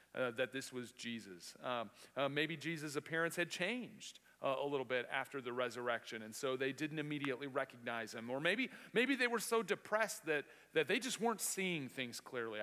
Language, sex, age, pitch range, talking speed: English, male, 40-59, 115-175 Hz, 195 wpm